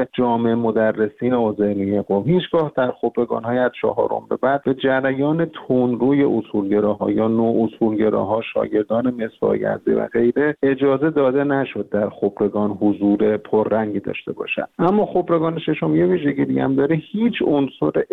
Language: Persian